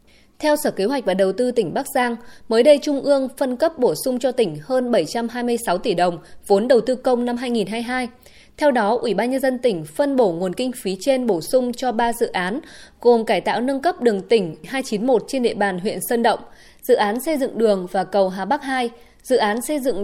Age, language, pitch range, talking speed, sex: 20-39, Vietnamese, 205-265 Hz, 230 wpm, female